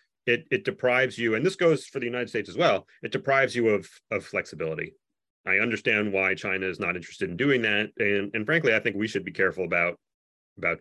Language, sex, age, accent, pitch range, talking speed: English, male, 30-49, American, 95-120 Hz, 220 wpm